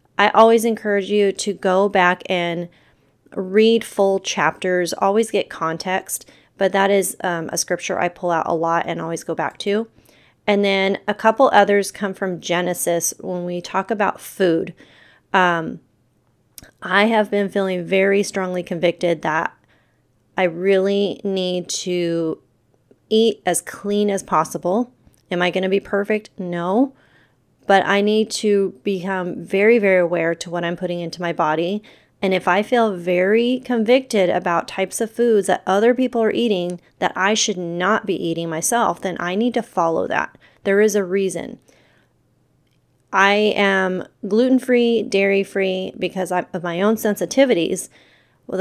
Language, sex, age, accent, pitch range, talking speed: English, female, 30-49, American, 175-210 Hz, 155 wpm